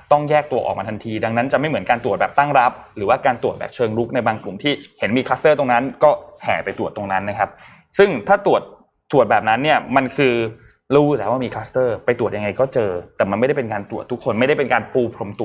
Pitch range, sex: 115-145 Hz, male